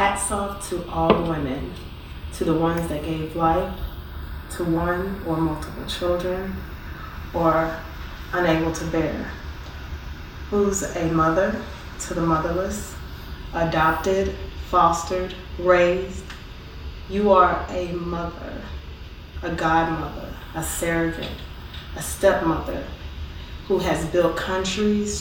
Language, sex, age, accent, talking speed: English, female, 20-39, American, 100 wpm